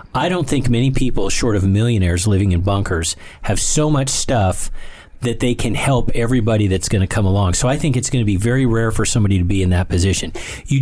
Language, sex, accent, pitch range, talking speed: English, male, American, 95-125 Hz, 235 wpm